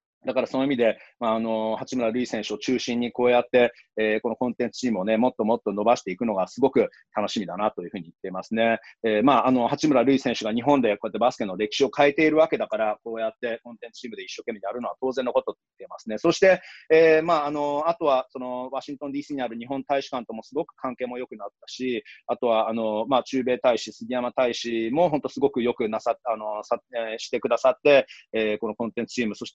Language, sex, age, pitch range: Japanese, male, 30-49, 110-145 Hz